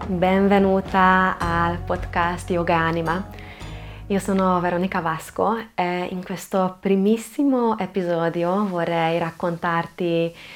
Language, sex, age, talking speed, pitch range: Italian, female, 20-39, 90 wpm, 165-185 Hz